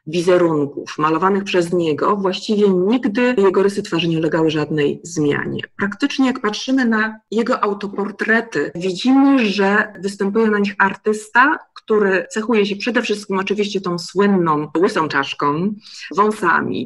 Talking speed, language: 130 wpm, Polish